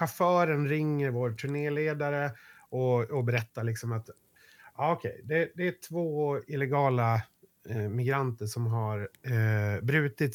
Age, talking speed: 30-49, 130 wpm